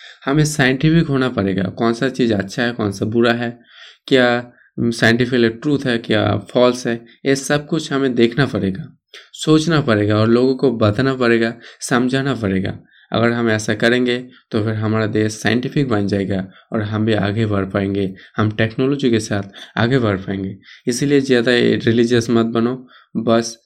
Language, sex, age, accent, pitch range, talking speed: Hindi, male, 20-39, native, 110-130 Hz, 165 wpm